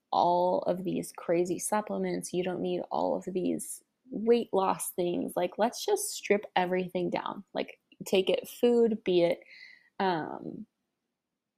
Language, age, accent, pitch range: English, 20-39, American, 180-230 Hz